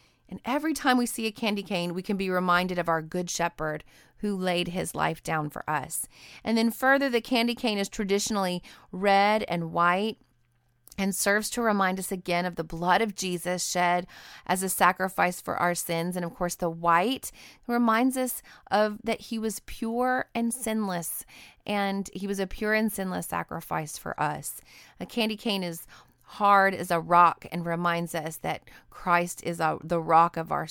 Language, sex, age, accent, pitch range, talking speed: English, female, 30-49, American, 170-215 Hz, 185 wpm